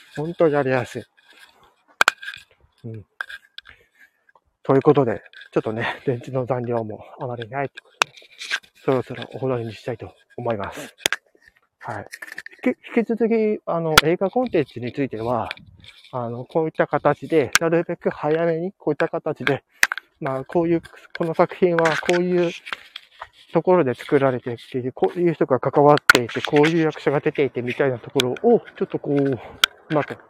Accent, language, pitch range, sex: native, Japanese, 130-170 Hz, male